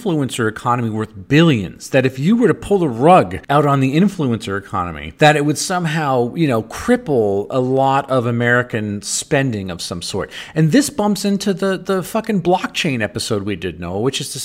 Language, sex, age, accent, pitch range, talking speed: English, male, 40-59, American, 125-180 Hz, 195 wpm